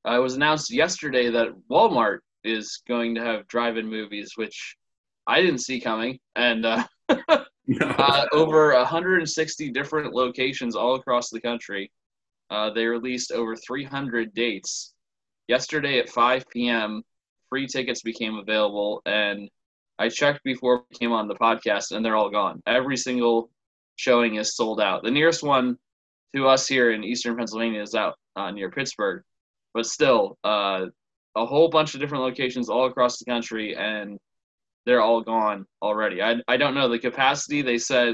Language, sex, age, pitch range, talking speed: English, male, 20-39, 110-130 Hz, 160 wpm